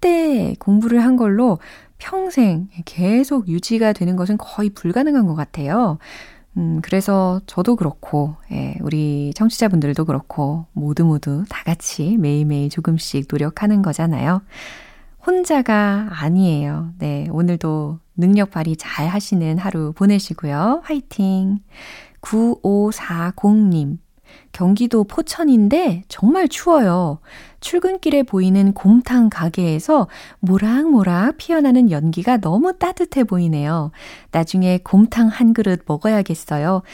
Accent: native